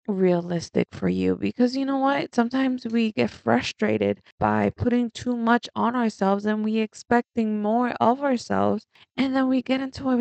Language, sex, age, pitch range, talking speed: English, female, 20-39, 185-235 Hz, 170 wpm